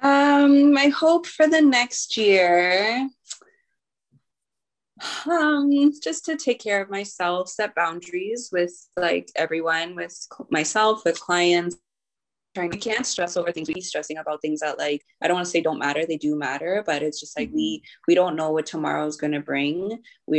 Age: 20-39